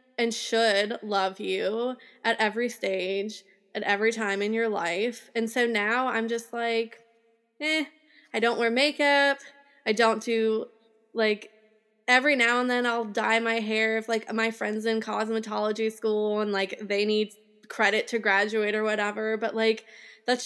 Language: English